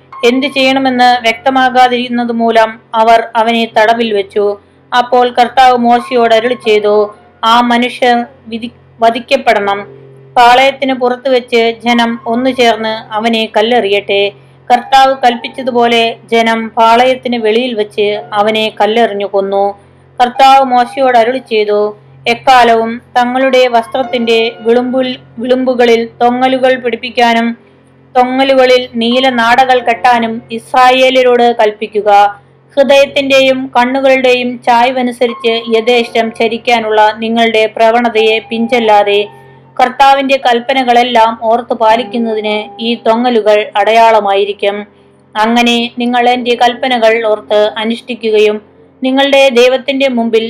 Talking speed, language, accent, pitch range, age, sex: 85 wpm, Malayalam, native, 220-250 Hz, 20-39, female